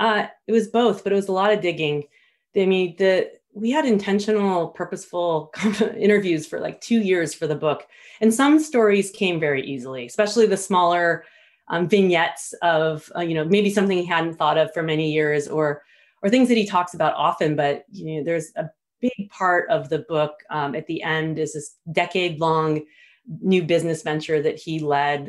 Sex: female